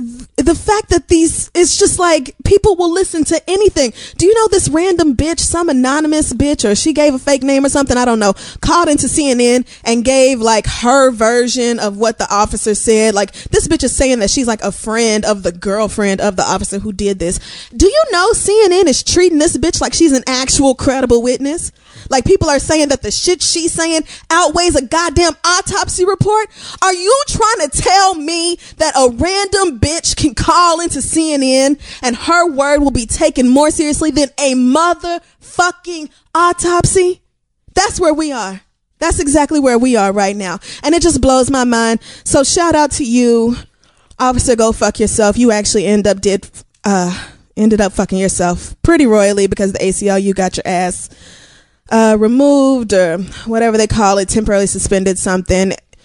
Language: English